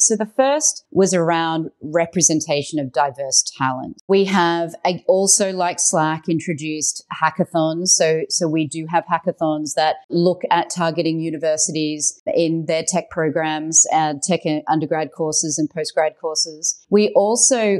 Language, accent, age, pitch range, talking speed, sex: English, Australian, 30-49, 155-195 Hz, 135 wpm, female